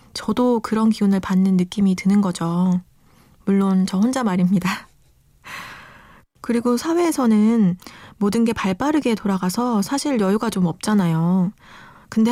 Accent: native